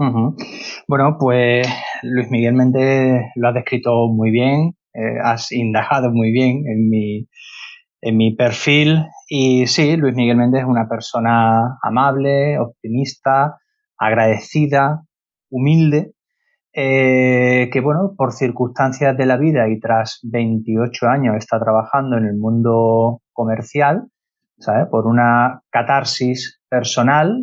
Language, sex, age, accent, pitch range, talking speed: Spanish, male, 30-49, Spanish, 115-140 Hz, 115 wpm